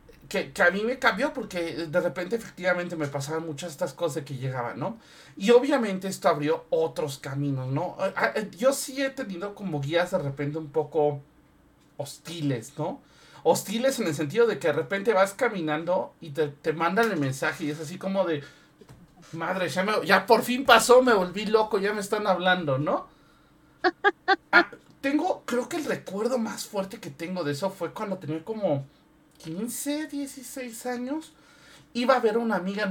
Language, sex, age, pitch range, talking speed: Spanish, male, 40-59, 150-230 Hz, 180 wpm